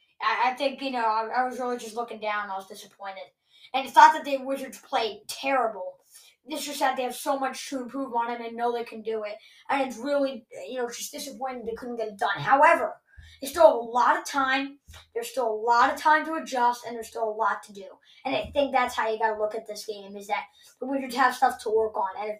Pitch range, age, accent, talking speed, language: 225-275 Hz, 20-39, American, 260 wpm, English